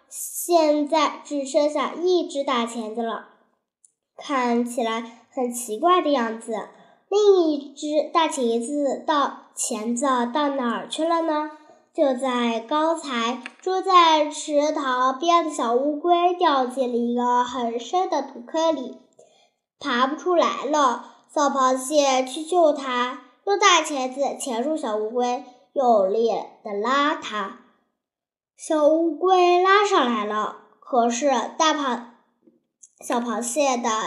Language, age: Chinese, 10-29